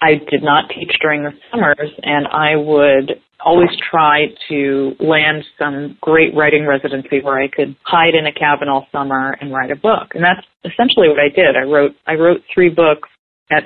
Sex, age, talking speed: female, 40-59, 195 wpm